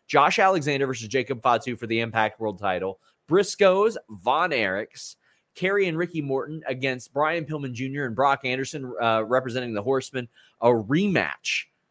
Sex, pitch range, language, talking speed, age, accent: male, 120-140 Hz, English, 150 wpm, 30-49, American